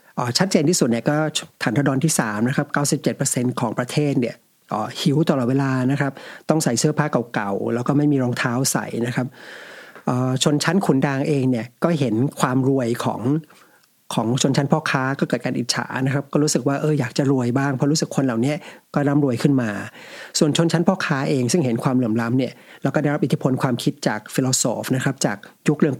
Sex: male